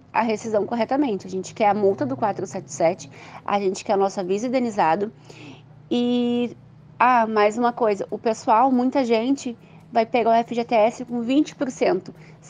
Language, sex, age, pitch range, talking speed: Portuguese, female, 20-39, 195-250 Hz, 155 wpm